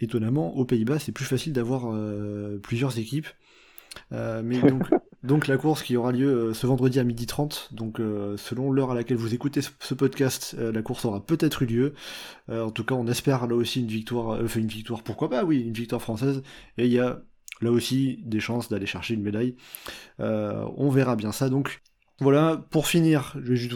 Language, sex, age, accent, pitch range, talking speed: French, male, 20-39, French, 115-140 Hz, 215 wpm